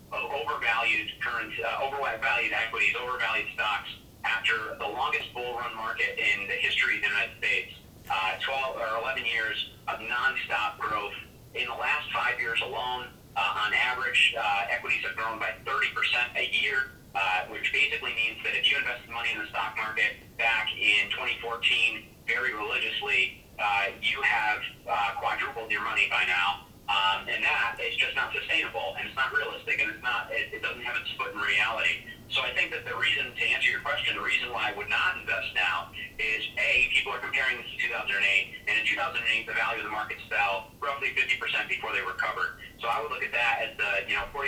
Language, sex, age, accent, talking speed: English, male, 30-49, American, 190 wpm